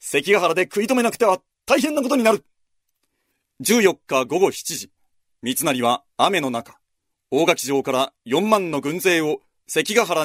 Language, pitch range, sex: Japanese, 125-170 Hz, male